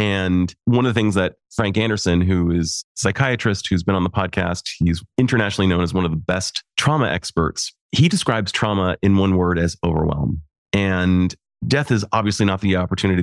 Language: English